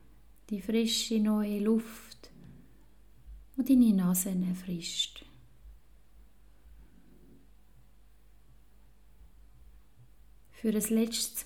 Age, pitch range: 30-49, 165-215 Hz